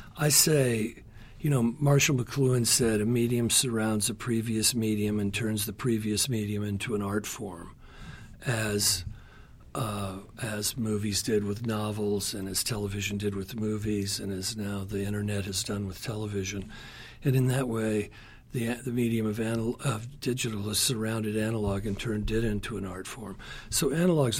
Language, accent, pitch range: English, American, 105-130 Hz